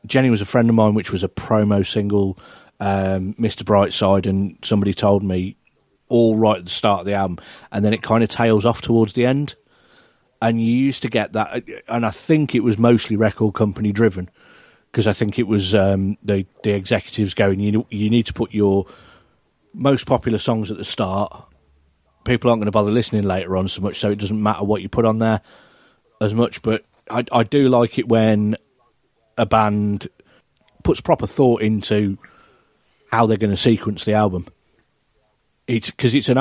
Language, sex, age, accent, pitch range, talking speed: English, male, 30-49, British, 100-120 Hz, 195 wpm